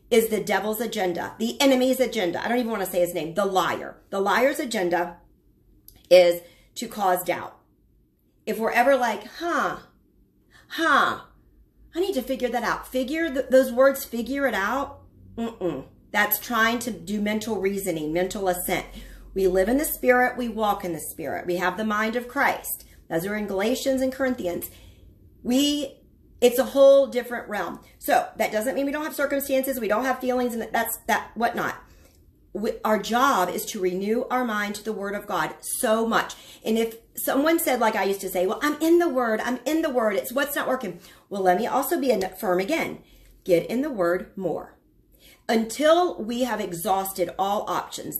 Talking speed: 190 wpm